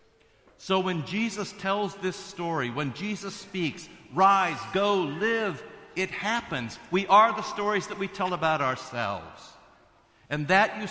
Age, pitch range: 50-69, 160-215 Hz